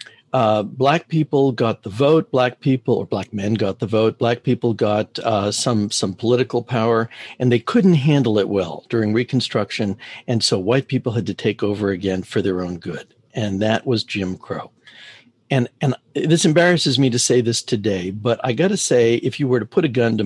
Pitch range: 105-135 Hz